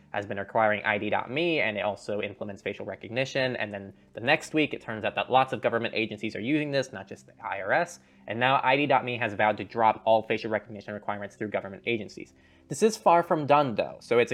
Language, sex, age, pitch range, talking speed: English, male, 20-39, 105-145 Hz, 220 wpm